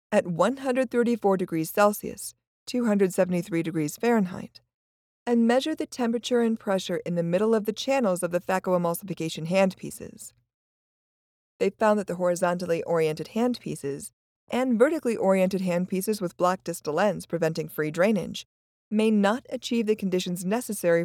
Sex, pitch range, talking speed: female, 175-235 Hz, 130 wpm